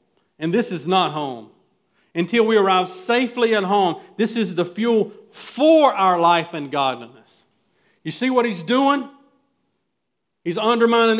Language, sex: English, male